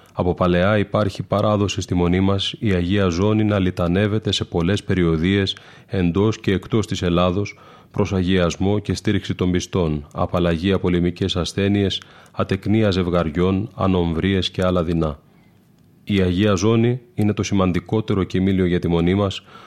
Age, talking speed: 30-49, 140 wpm